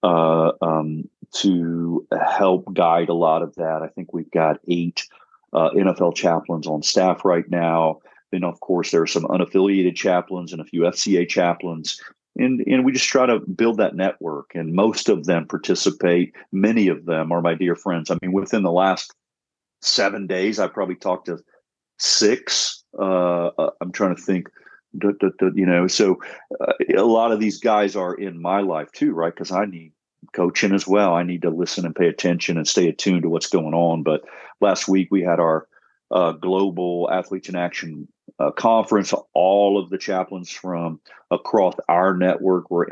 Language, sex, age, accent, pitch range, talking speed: English, male, 40-59, American, 85-100 Hz, 180 wpm